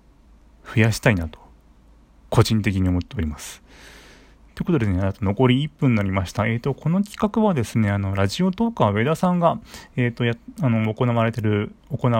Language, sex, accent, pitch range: Japanese, male, native, 95-135 Hz